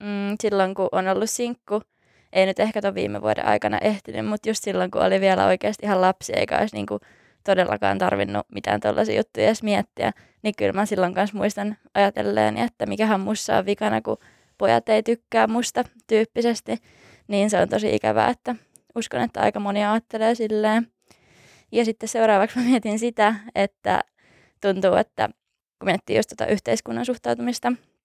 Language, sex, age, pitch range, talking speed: Finnish, female, 20-39, 130-215 Hz, 170 wpm